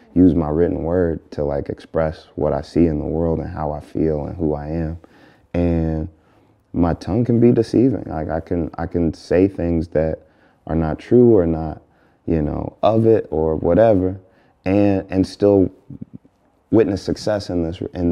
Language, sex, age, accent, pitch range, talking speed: English, male, 30-49, American, 80-95 Hz, 180 wpm